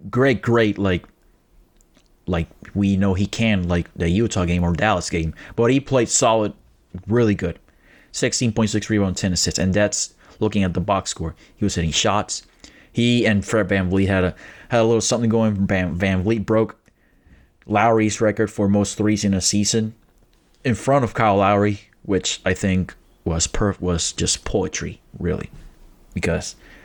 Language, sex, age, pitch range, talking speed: English, male, 30-49, 90-110 Hz, 170 wpm